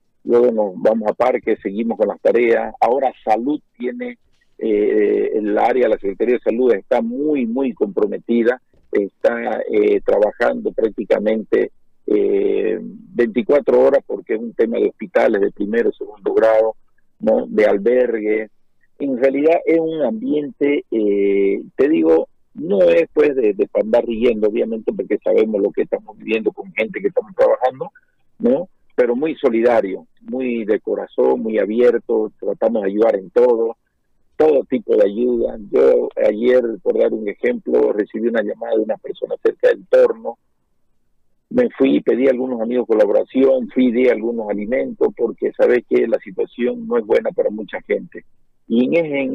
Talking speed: 160 wpm